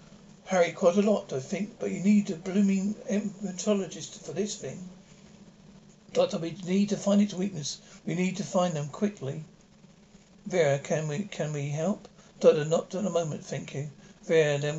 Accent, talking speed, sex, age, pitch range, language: British, 175 wpm, male, 60-79, 170-200 Hz, English